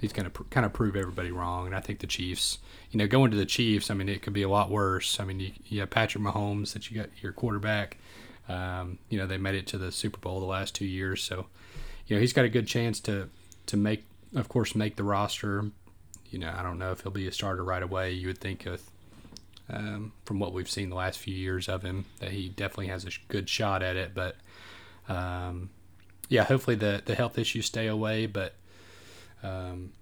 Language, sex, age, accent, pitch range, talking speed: English, male, 30-49, American, 95-110 Hz, 235 wpm